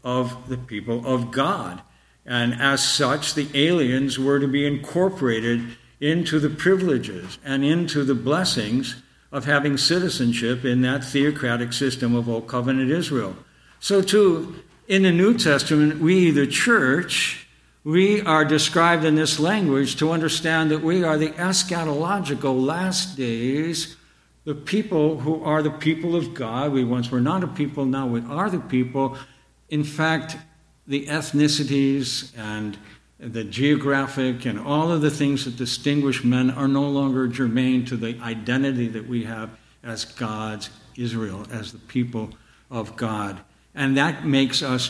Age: 60-79